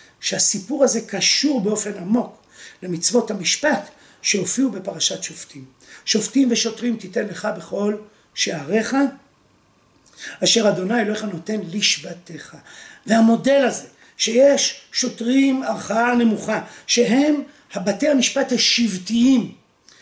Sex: male